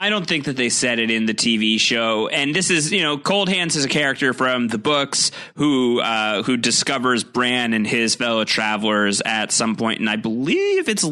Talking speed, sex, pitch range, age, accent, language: 215 wpm, male, 110-130 Hz, 30-49, American, English